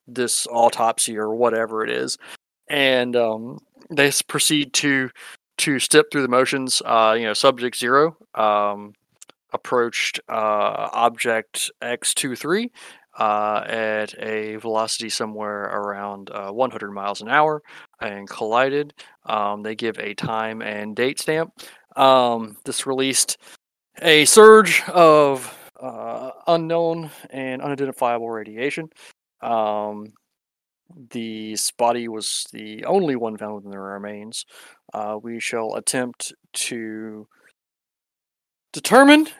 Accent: American